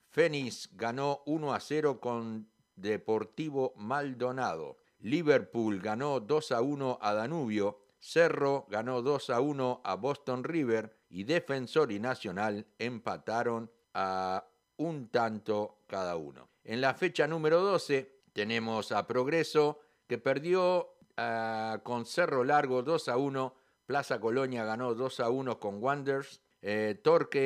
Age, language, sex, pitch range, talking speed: 50-69, Spanish, male, 115-150 Hz, 130 wpm